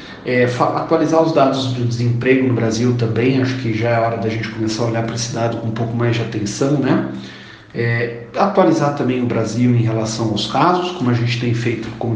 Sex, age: male, 40-59